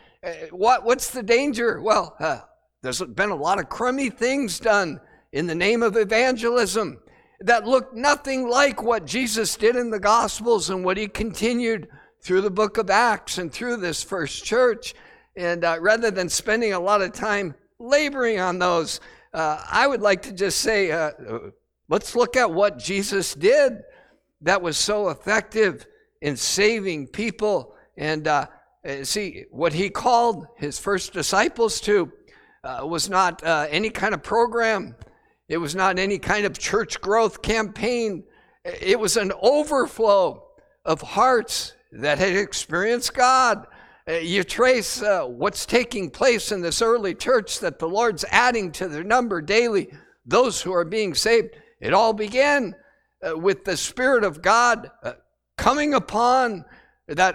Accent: American